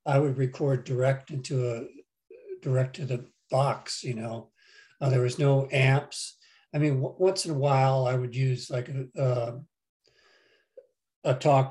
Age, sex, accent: 60-79, male, American